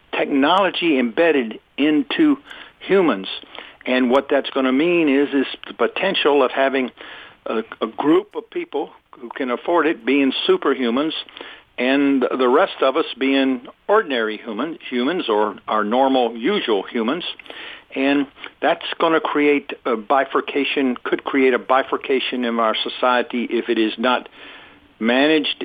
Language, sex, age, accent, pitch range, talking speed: English, male, 60-79, American, 120-180 Hz, 140 wpm